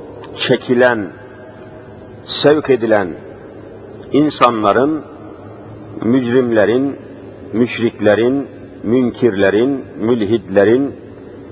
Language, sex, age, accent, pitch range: Turkish, male, 50-69, native, 120-155 Hz